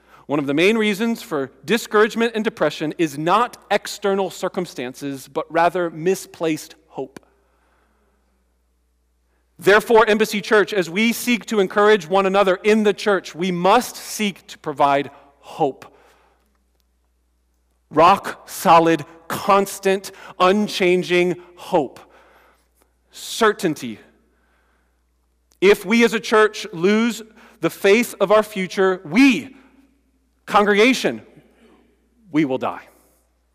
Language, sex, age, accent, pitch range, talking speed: English, male, 40-59, American, 155-220 Hz, 100 wpm